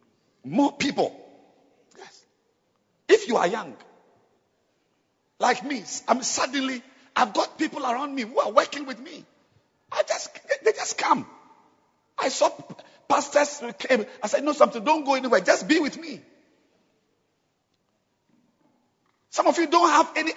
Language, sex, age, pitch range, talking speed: English, male, 50-69, 205-300 Hz, 140 wpm